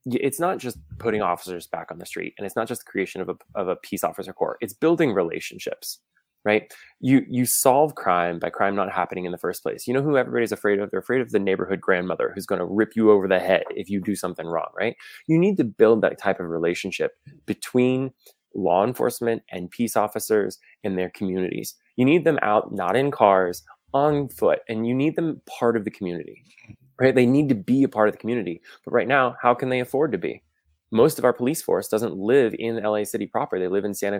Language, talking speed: English, 230 wpm